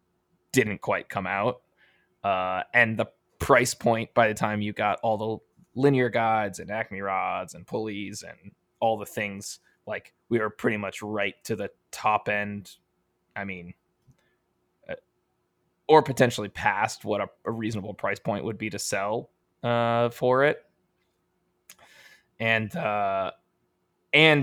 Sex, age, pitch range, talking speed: male, 20-39, 100-115 Hz, 140 wpm